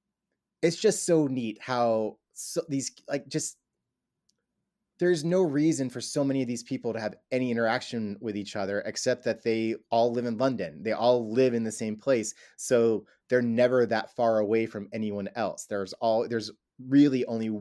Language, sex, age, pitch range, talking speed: English, male, 30-49, 110-130 Hz, 180 wpm